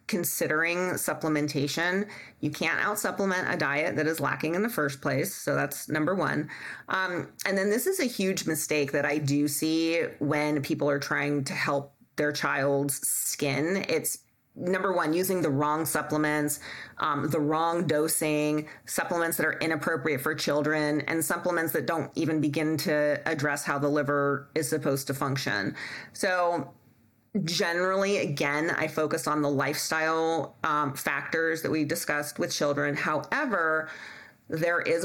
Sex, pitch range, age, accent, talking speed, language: female, 145-165 Hz, 30-49, American, 155 wpm, English